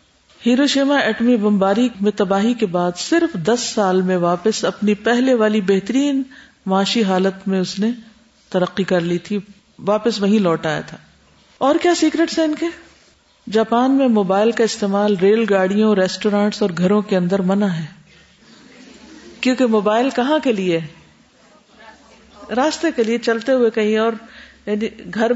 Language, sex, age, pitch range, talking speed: Urdu, female, 50-69, 205-255 Hz, 155 wpm